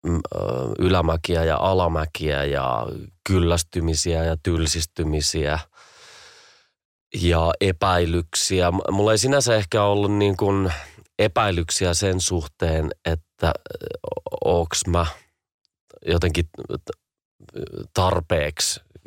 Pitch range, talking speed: 80-95 Hz, 70 wpm